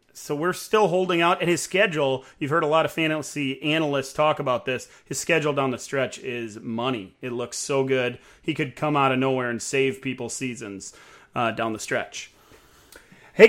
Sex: male